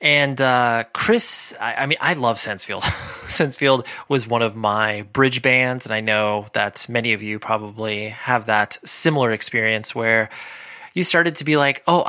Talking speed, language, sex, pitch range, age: 175 wpm, English, male, 110-135 Hz, 20-39